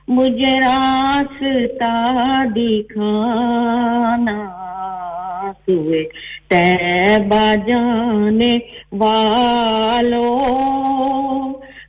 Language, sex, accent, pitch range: English, female, Indian, 235-300 Hz